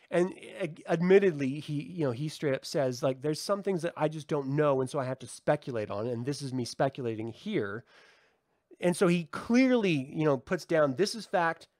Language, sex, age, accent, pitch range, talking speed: English, male, 30-49, American, 125-160 Hz, 215 wpm